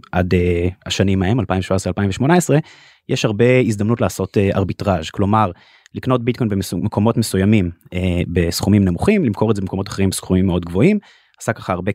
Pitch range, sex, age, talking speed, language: 95-125 Hz, male, 20-39, 160 wpm, Hebrew